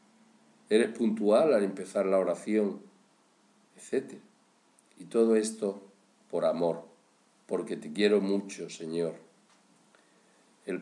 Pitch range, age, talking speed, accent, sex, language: 90-110 Hz, 50-69, 100 wpm, Spanish, male, Spanish